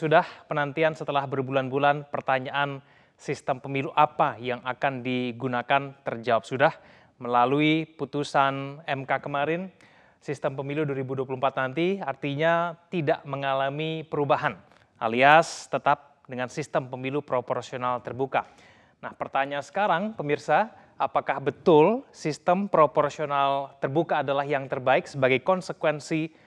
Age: 20-39